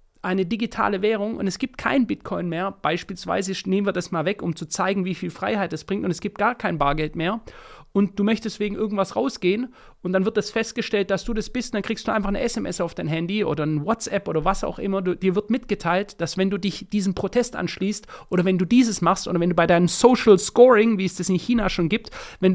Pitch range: 175-220 Hz